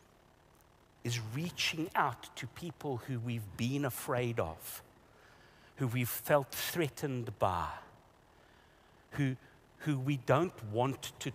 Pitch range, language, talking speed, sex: 110-140 Hz, English, 110 wpm, male